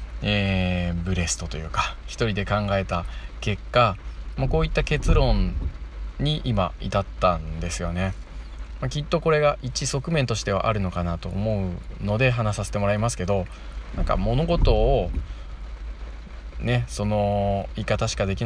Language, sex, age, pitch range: Japanese, male, 20-39, 80-130 Hz